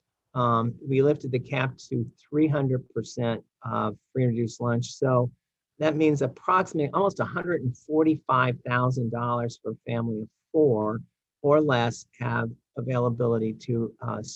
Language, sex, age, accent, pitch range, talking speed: English, male, 50-69, American, 115-140 Hz, 145 wpm